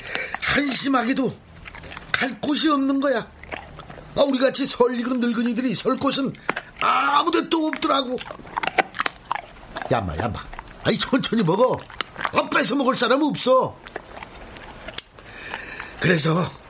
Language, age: Korean, 50-69